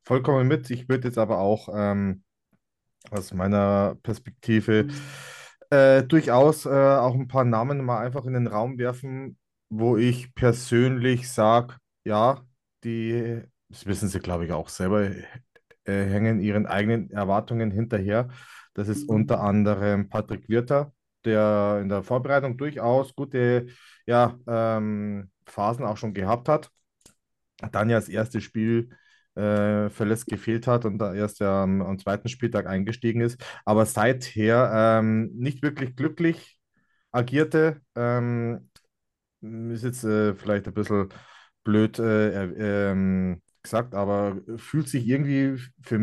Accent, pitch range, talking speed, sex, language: German, 105-125 Hz, 130 wpm, male, German